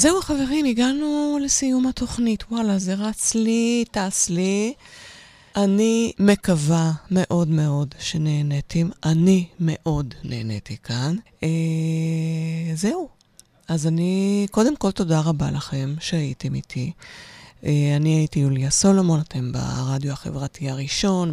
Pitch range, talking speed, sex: 155-190 Hz, 115 wpm, female